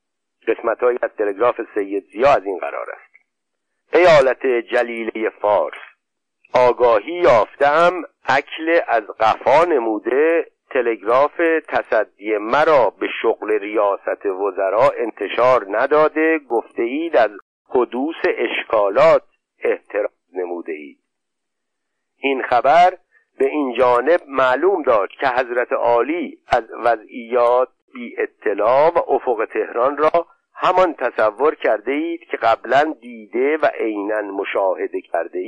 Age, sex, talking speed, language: 50-69, male, 110 wpm, Persian